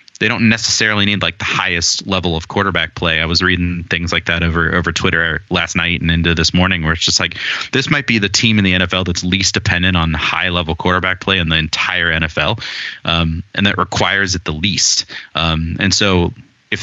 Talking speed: 220 wpm